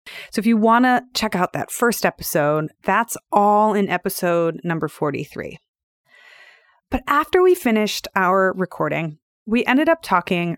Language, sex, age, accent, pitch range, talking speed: English, female, 30-49, American, 170-225 Hz, 145 wpm